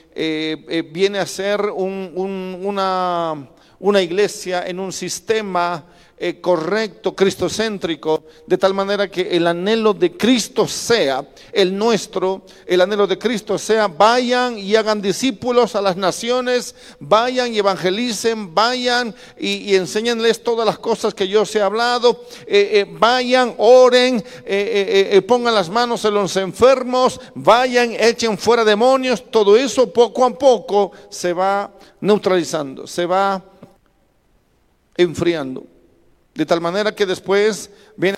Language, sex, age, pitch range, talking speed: Spanish, male, 50-69, 190-235 Hz, 135 wpm